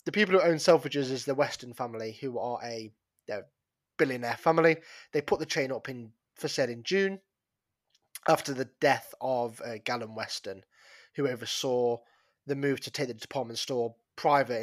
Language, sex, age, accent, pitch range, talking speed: English, male, 20-39, British, 130-170 Hz, 175 wpm